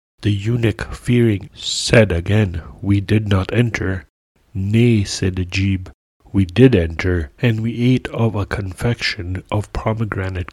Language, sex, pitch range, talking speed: English, male, 95-110 Hz, 130 wpm